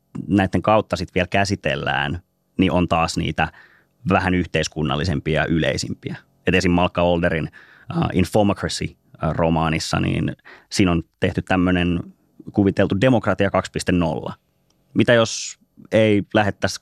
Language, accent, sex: Finnish, native, male